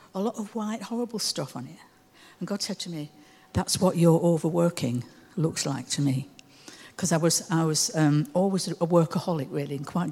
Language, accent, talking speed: English, British, 195 wpm